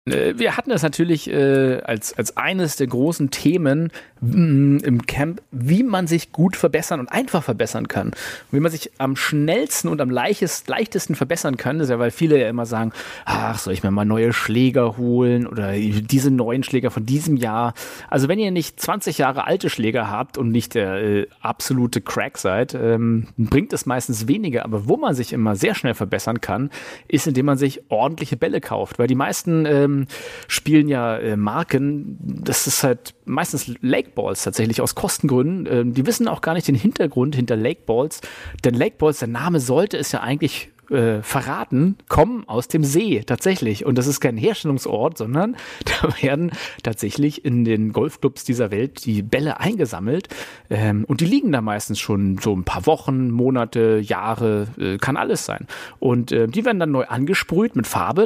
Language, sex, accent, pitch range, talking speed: German, male, German, 115-155 Hz, 180 wpm